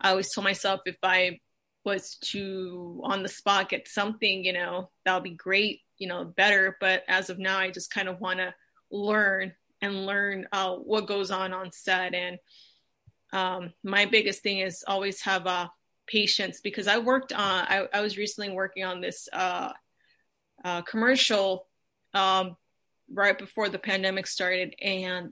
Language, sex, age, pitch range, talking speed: English, female, 20-39, 185-205 Hz, 170 wpm